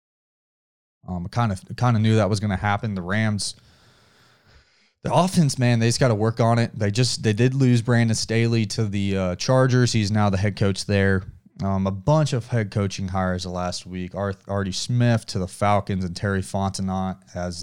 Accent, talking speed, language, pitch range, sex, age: American, 195 wpm, English, 95-115 Hz, male, 20-39